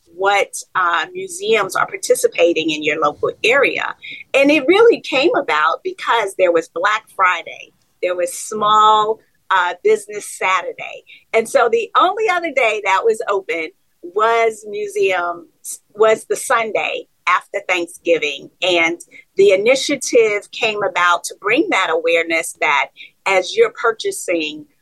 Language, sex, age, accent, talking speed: English, female, 40-59, American, 130 wpm